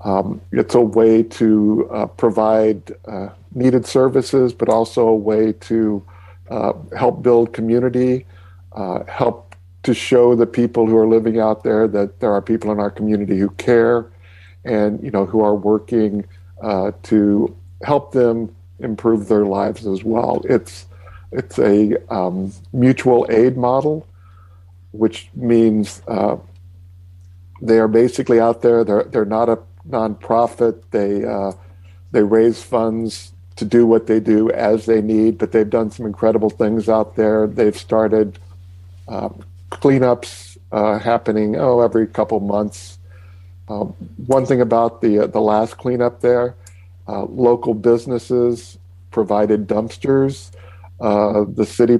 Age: 50-69